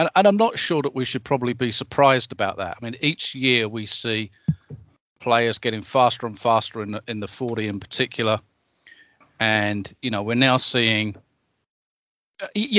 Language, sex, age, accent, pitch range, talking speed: English, male, 40-59, British, 110-135 Hz, 175 wpm